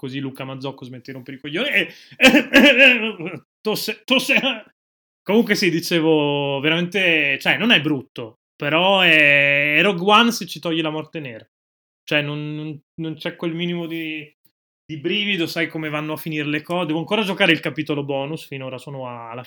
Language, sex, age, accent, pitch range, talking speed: Italian, male, 20-39, native, 130-170 Hz, 185 wpm